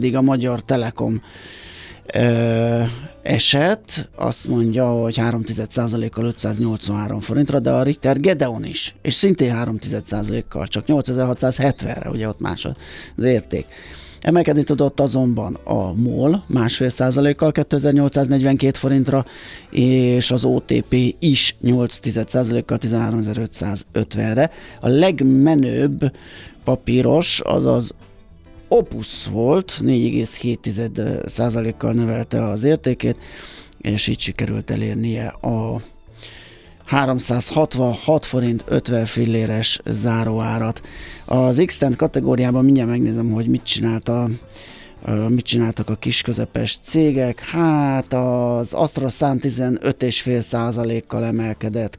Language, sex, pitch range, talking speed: Hungarian, male, 110-135 Hz, 95 wpm